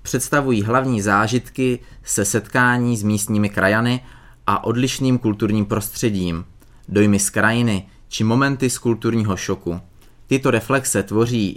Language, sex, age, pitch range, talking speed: Czech, male, 30-49, 100-125 Hz, 120 wpm